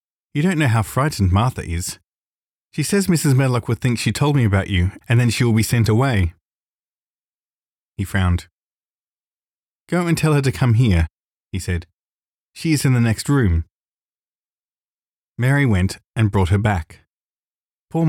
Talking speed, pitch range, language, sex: 165 wpm, 90-125 Hz, English, male